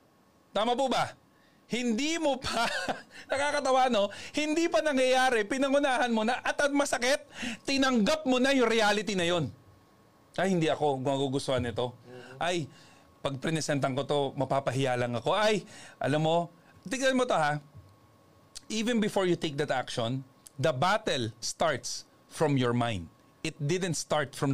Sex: male